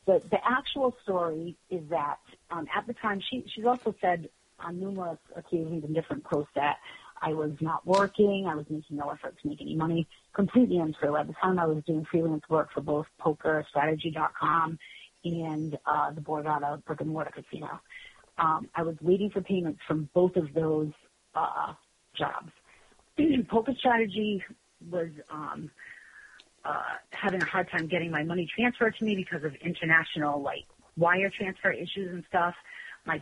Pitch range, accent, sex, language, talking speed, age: 155-195 Hz, American, female, English, 170 wpm, 40-59